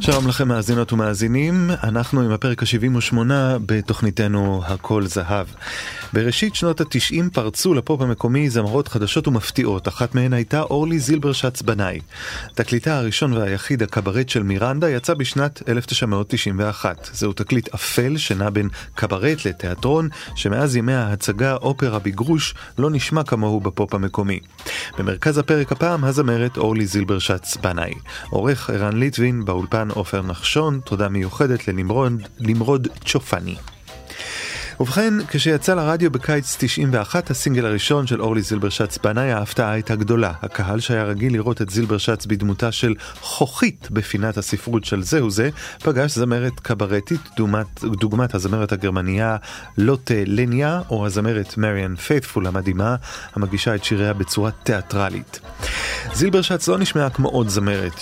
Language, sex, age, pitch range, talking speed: Hebrew, male, 30-49, 105-135 Hz, 130 wpm